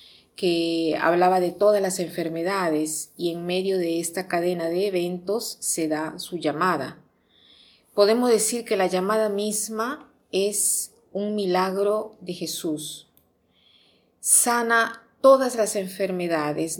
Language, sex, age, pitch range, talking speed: Spanish, female, 40-59, 165-195 Hz, 120 wpm